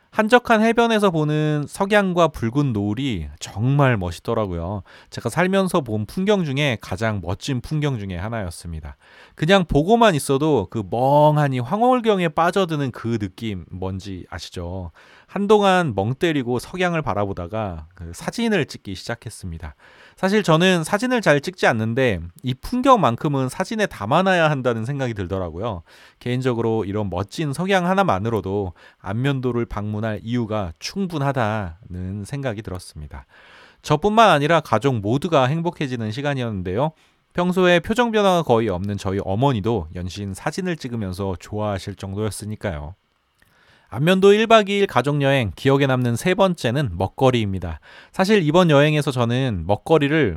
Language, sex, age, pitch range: Korean, male, 30-49, 105-170 Hz